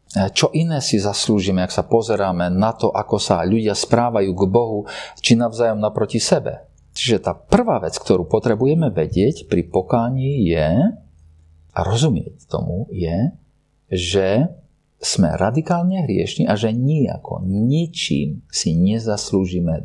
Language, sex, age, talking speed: Slovak, male, 40-59, 130 wpm